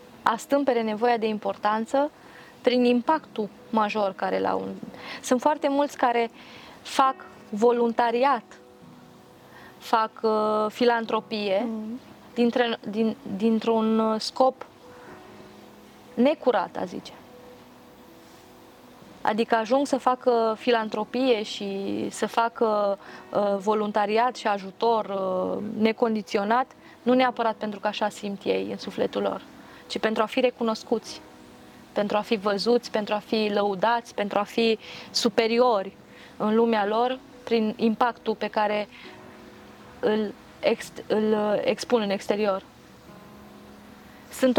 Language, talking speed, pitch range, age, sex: Romanian, 110 wpm, 210-245 Hz, 20-39, female